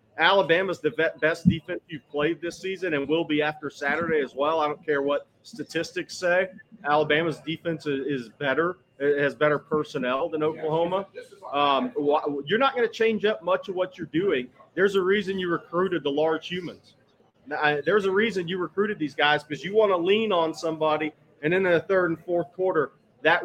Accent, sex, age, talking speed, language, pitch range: American, male, 30-49, 185 wpm, English, 150-180 Hz